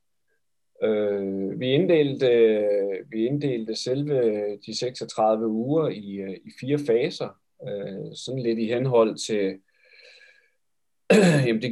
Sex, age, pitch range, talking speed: male, 30-49, 105-145 Hz, 90 wpm